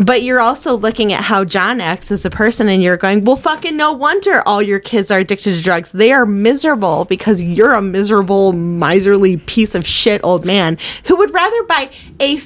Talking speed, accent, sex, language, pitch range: 205 wpm, American, female, English, 200-305 Hz